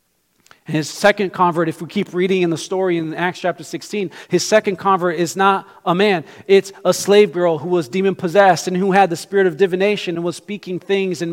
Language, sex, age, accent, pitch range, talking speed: English, male, 40-59, American, 170-205 Hz, 210 wpm